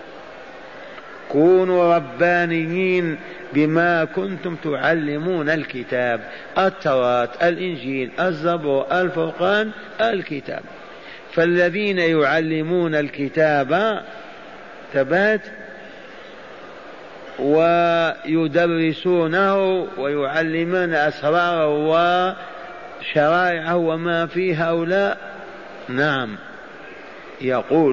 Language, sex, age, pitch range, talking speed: Arabic, male, 50-69, 140-175 Hz, 50 wpm